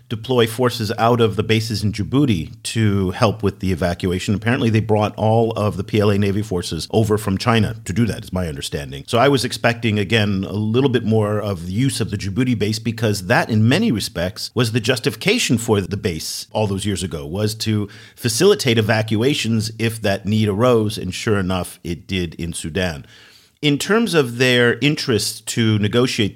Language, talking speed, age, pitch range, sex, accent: English, 190 wpm, 50-69, 95-120 Hz, male, American